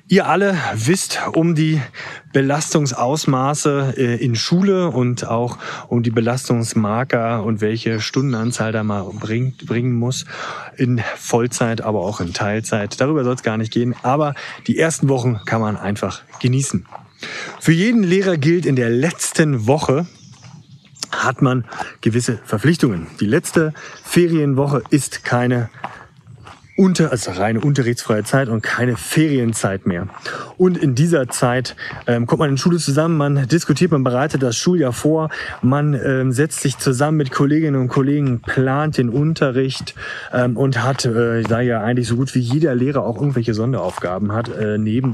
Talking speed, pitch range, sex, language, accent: 155 wpm, 115-150 Hz, male, German, German